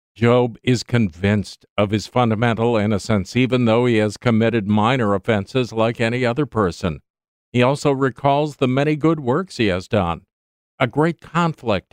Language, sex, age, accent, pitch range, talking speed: English, male, 50-69, American, 105-135 Hz, 155 wpm